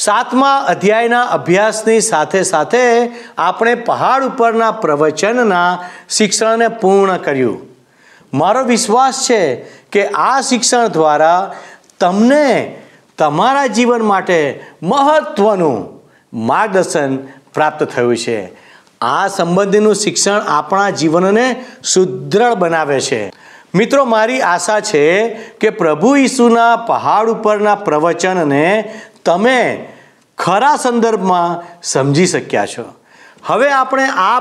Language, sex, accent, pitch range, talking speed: Gujarati, male, native, 170-235 Hz, 95 wpm